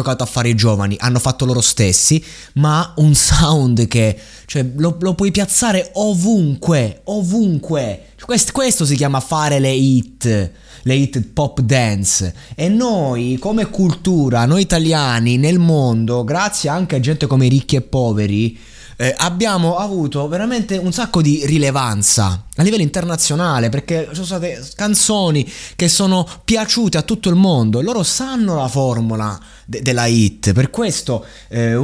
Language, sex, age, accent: Italian, male, 20-39, native